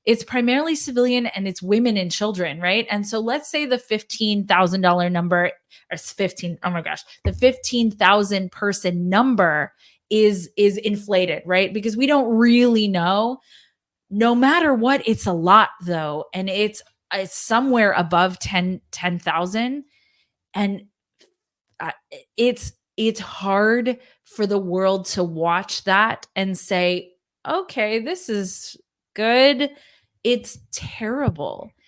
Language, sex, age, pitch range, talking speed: English, female, 20-39, 180-230 Hz, 125 wpm